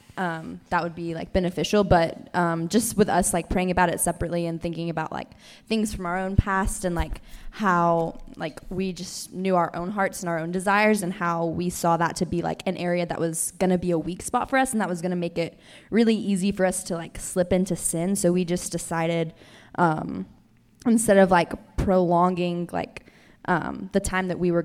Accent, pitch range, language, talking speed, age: American, 170-195 Hz, English, 220 wpm, 20-39